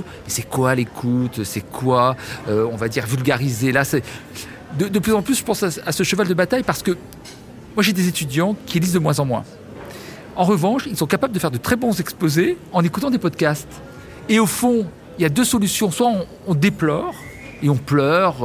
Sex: male